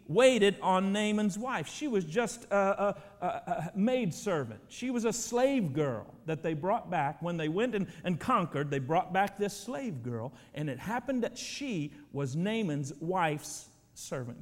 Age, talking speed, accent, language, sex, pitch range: 50-69, 175 wpm, American, English, male, 160-225 Hz